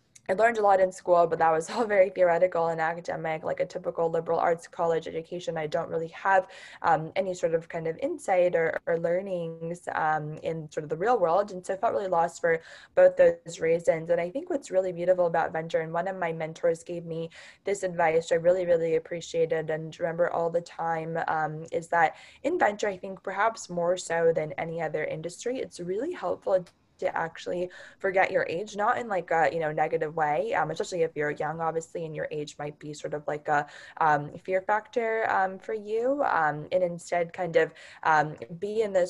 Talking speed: 210 wpm